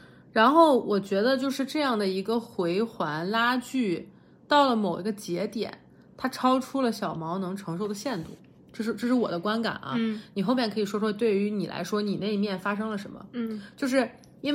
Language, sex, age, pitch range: Chinese, female, 30-49, 195-260 Hz